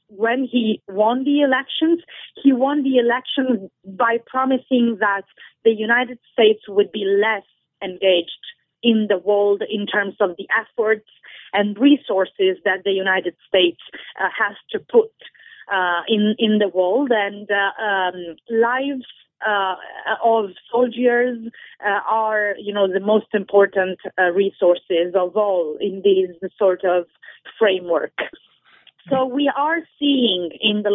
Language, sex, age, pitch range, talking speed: English, female, 30-49, 195-240 Hz, 140 wpm